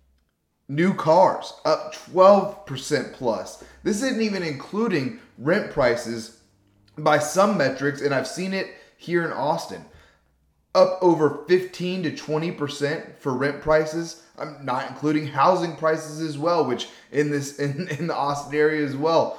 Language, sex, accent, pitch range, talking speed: English, male, American, 135-165 Hz, 140 wpm